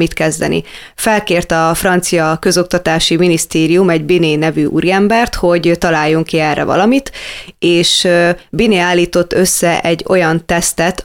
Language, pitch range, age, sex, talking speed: Hungarian, 165-190 Hz, 20-39, female, 125 wpm